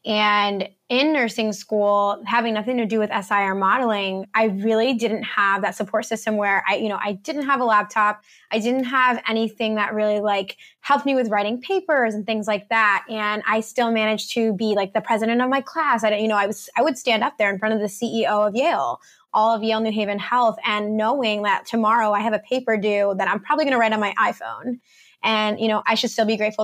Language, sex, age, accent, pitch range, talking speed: English, female, 20-39, American, 210-240 Hz, 235 wpm